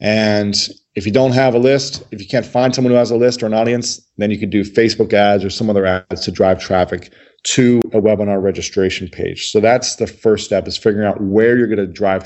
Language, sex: English, male